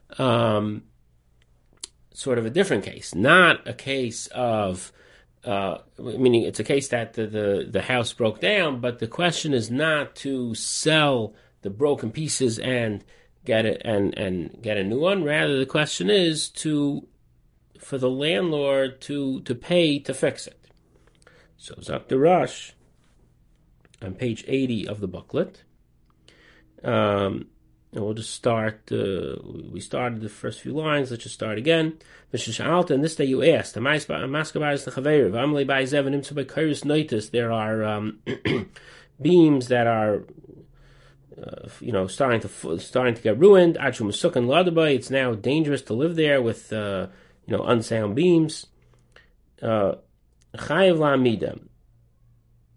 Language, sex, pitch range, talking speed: English, male, 110-145 Hz, 130 wpm